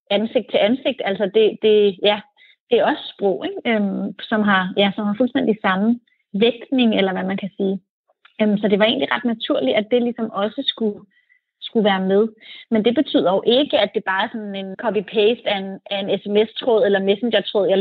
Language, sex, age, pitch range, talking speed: Danish, female, 30-49, 200-235 Hz, 205 wpm